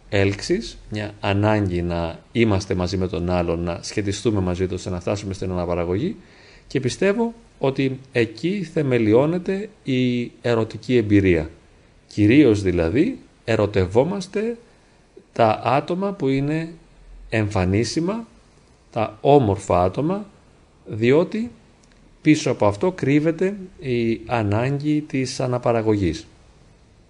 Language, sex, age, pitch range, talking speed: Greek, male, 30-49, 95-150 Hz, 95 wpm